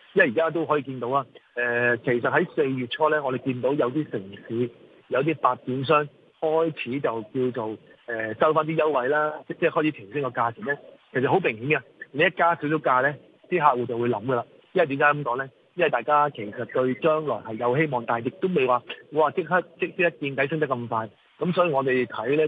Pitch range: 120-150 Hz